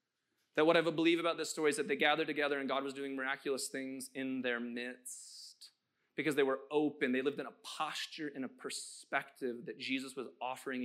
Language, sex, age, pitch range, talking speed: English, male, 30-49, 190-270 Hz, 205 wpm